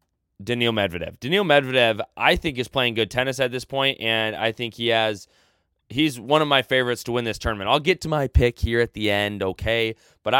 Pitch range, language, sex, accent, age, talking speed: 110-135 Hz, English, male, American, 20-39, 220 wpm